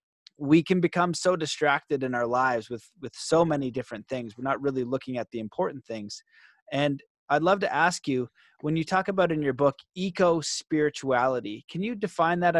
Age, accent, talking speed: 30-49, American, 190 wpm